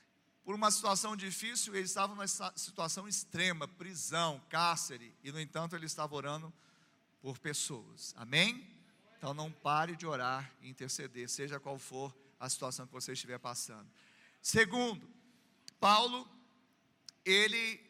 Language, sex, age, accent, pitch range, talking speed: Portuguese, male, 40-59, Brazilian, 160-215 Hz, 130 wpm